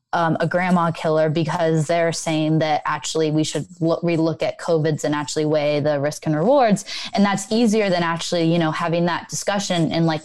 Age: 20-39